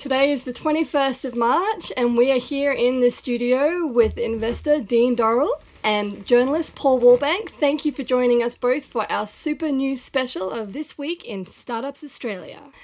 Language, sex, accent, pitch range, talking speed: English, female, Australian, 205-285 Hz, 180 wpm